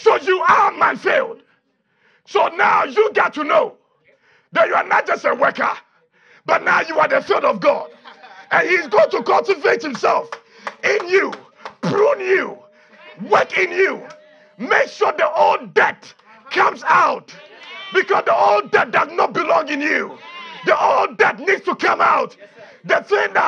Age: 50-69